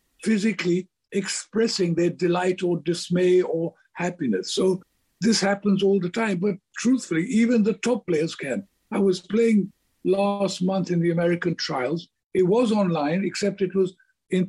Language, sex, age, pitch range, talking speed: English, male, 60-79, 170-200 Hz, 155 wpm